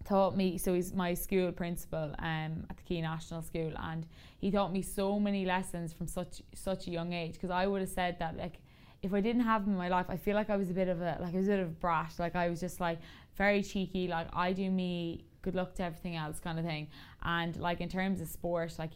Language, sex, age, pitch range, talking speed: English, female, 10-29, 160-180 Hz, 265 wpm